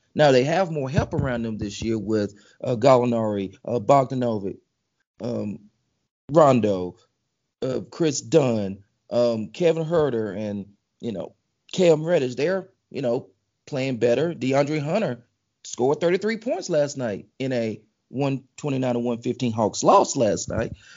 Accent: American